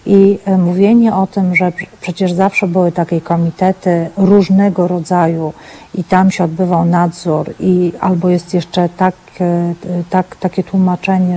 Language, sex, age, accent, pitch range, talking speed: Polish, female, 40-59, native, 175-195 Hz, 130 wpm